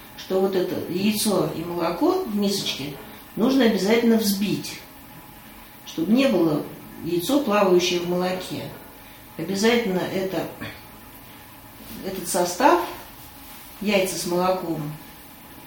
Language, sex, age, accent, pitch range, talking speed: Russian, female, 40-59, native, 155-210 Hz, 90 wpm